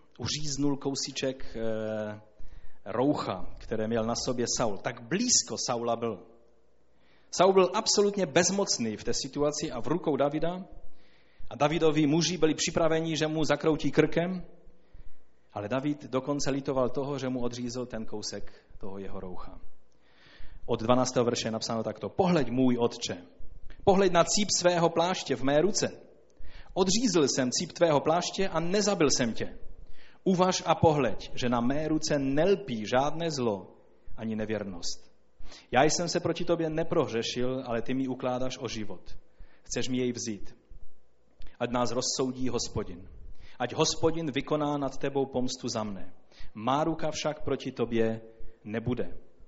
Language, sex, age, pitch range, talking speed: Czech, male, 30-49, 115-160 Hz, 145 wpm